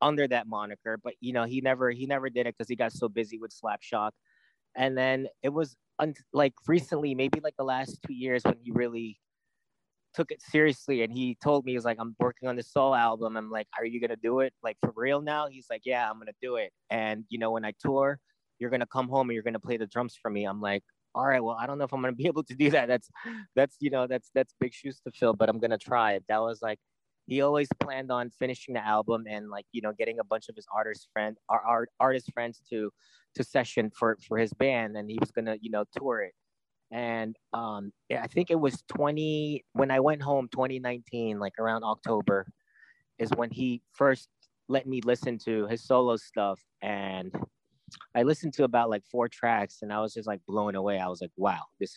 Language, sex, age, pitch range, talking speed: Filipino, male, 20-39, 110-135 Hz, 240 wpm